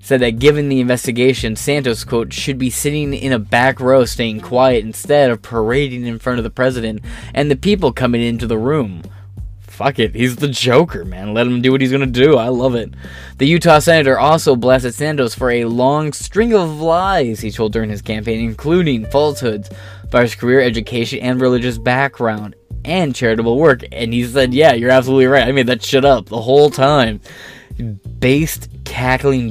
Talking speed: 190 wpm